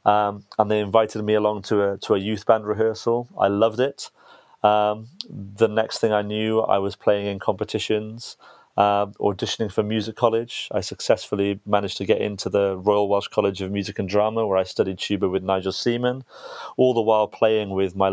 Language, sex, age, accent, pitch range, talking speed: English, male, 30-49, British, 100-105 Hz, 195 wpm